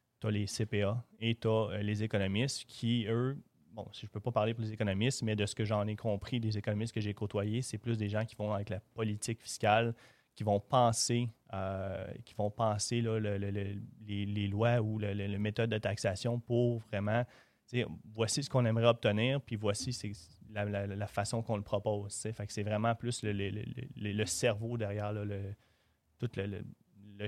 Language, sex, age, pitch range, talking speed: French, male, 30-49, 105-120 Hz, 220 wpm